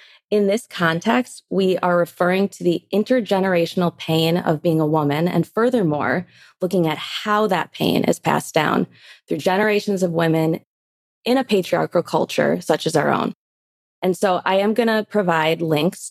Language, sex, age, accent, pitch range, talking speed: English, female, 20-39, American, 160-195 Hz, 165 wpm